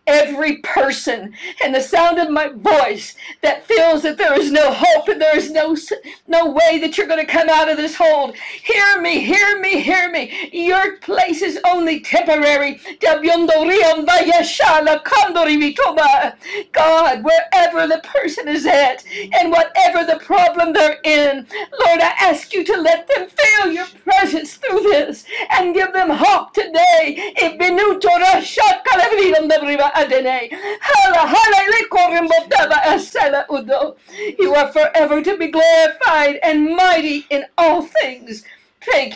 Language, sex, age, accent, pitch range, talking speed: English, female, 60-79, American, 290-355 Hz, 125 wpm